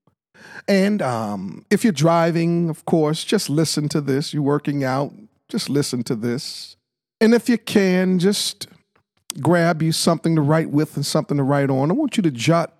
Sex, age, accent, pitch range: male, 50-69, American, 145-185 Hz